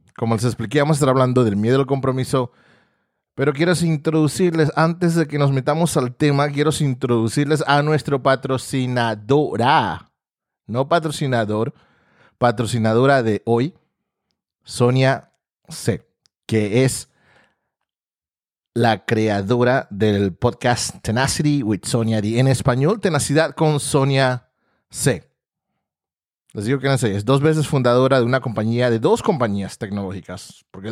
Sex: male